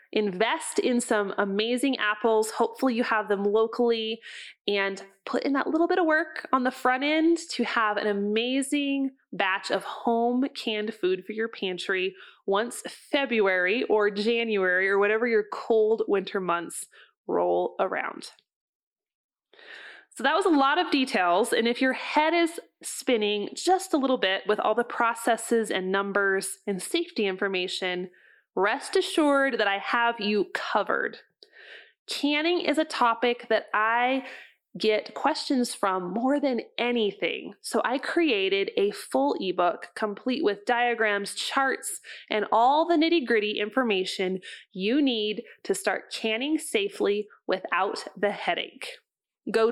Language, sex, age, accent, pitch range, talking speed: English, female, 20-39, American, 205-280 Hz, 140 wpm